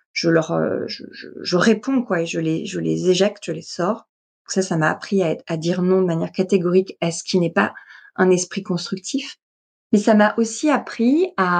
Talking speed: 220 wpm